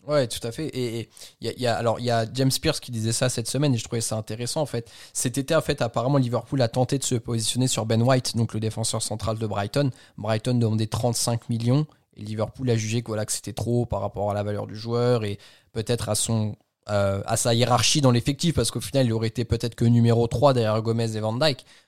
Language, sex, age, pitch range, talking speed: French, male, 20-39, 110-130 Hz, 250 wpm